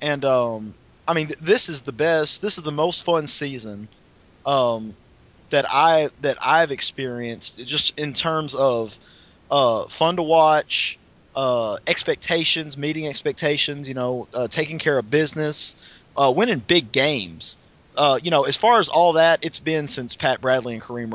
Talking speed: 165 wpm